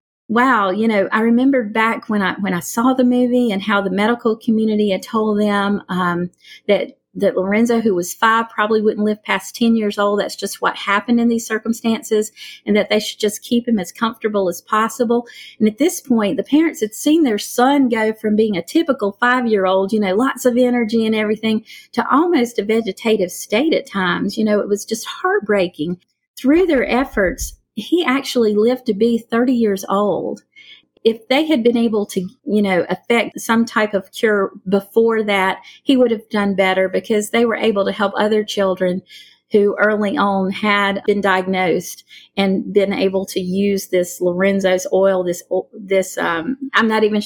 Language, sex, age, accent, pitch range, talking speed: English, female, 40-59, American, 195-235 Hz, 190 wpm